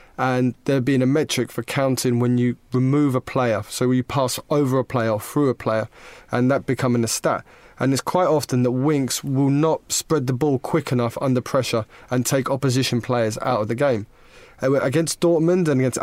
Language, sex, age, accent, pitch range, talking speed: English, male, 20-39, British, 120-140 Hz, 200 wpm